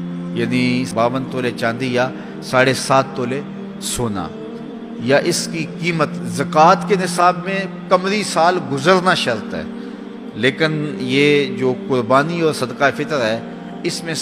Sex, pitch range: male, 130-180 Hz